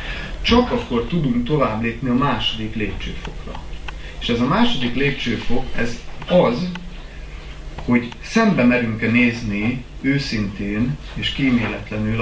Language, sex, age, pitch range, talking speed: Hungarian, male, 30-49, 95-125 Hz, 110 wpm